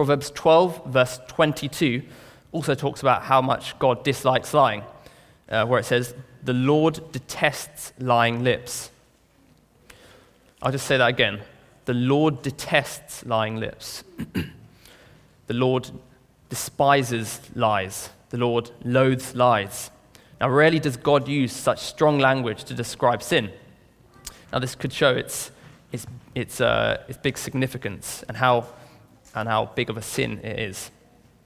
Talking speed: 135 wpm